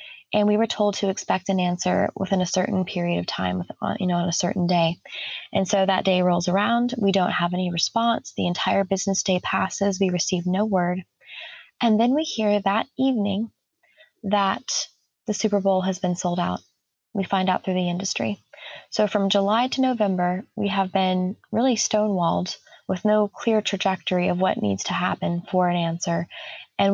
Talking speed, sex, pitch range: 185 wpm, female, 180-210 Hz